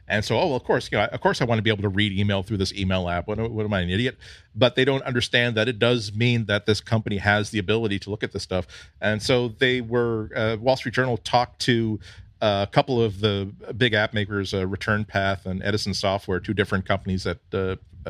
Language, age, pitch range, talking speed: English, 40-59, 100-120 Hz, 255 wpm